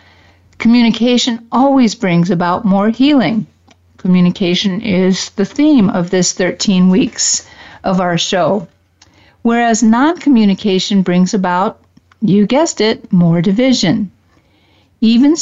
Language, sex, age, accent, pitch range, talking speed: English, female, 50-69, American, 180-230 Hz, 105 wpm